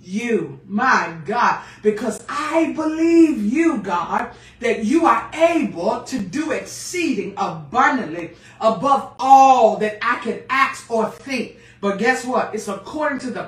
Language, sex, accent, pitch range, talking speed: English, female, American, 210-270 Hz, 140 wpm